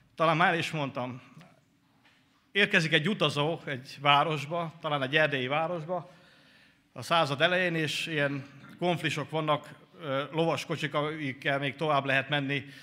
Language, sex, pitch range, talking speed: Hungarian, male, 130-160 Hz, 125 wpm